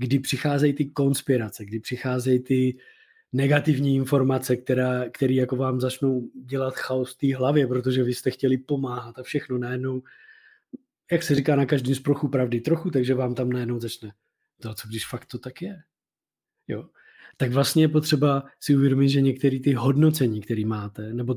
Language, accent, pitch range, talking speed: Czech, native, 120-140 Hz, 170 wpm